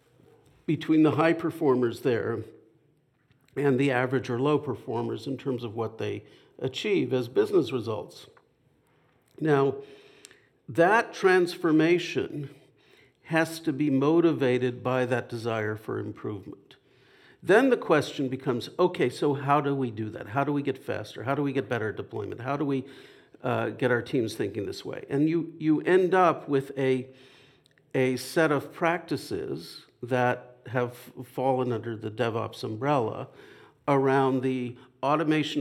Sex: male